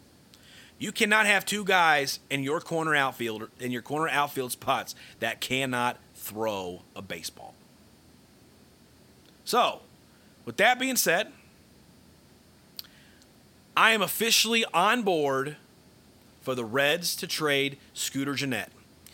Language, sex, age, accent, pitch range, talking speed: English, male, 30-49, American, 110-150 Hz, 115 wpm